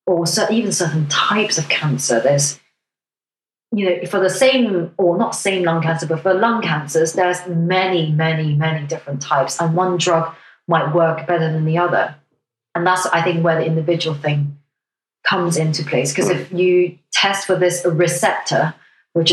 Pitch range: 155-180 Hz